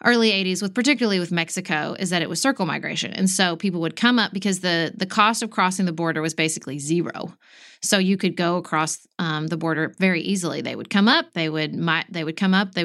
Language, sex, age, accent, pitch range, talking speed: English, female, 30-49, American, 175-230 Hz, 240 wpm